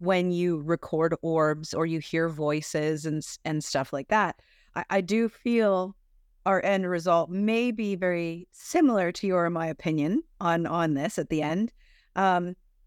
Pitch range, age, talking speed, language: 160-200 Hz, 30-49, 170 wpm, English